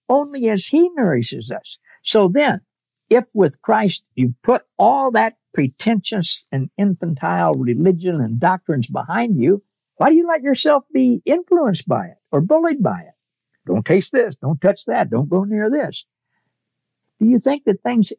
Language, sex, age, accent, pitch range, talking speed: English, male, 60-79, American, 140-230 Hz, 165 wpm